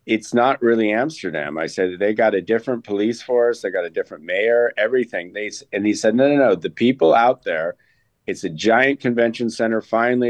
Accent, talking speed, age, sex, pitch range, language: American, 205 wpm, 50-69, male, 105-120 Hz, English